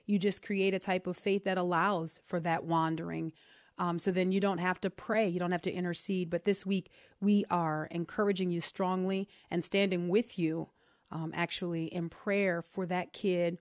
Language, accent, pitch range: English, American, 175-195 Hz